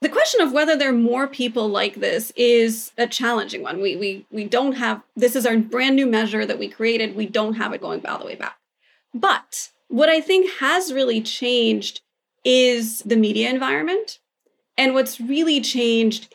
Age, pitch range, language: 30-49, 225-285 Hz, English